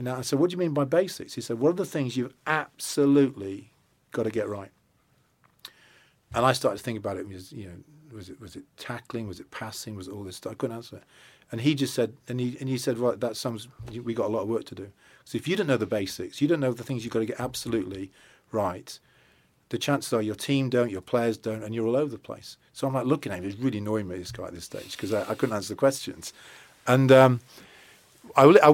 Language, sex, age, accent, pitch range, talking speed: English, male, 40-59, British, 110-140 Hz, 260 wpm